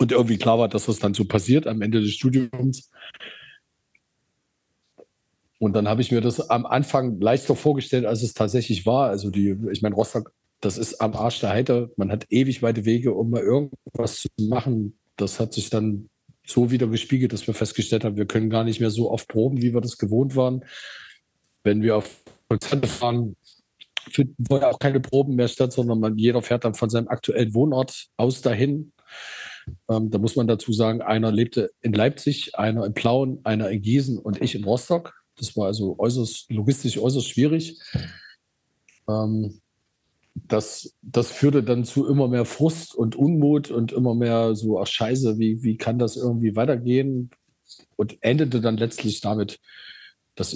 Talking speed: 175 wpm